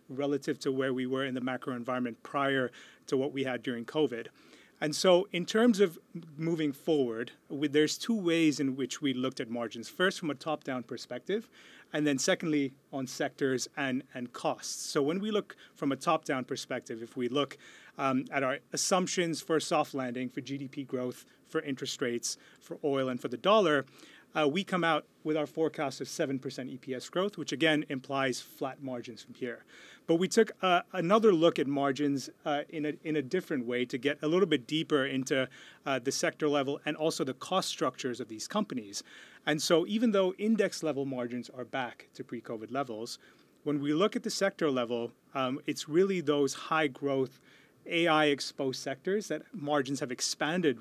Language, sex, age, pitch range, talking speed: English, male, 30-49, 130-160 Hz, 190 wpm